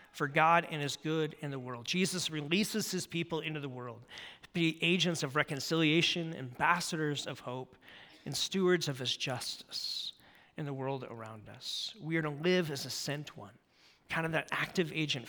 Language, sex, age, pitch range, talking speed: English, male, 40-59, 135-175 Hz, 180 wpm